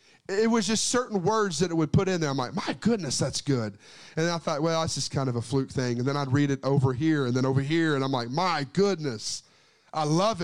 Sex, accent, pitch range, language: male, American, 150-225 Hz, English